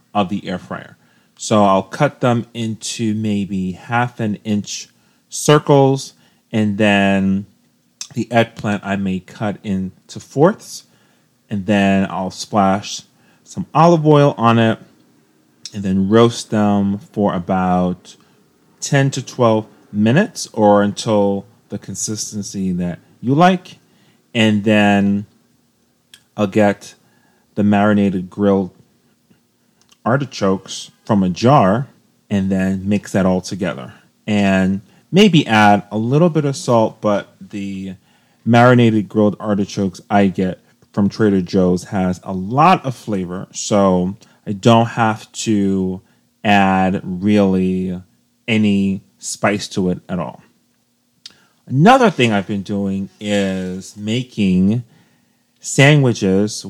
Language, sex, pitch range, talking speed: English, male, 95-115 Hz, 115 wpm